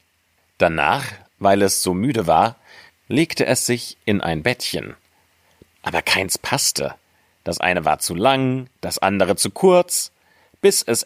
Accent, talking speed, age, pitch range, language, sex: German, 140 wpm, 40-59, 85-115 Hz, German, male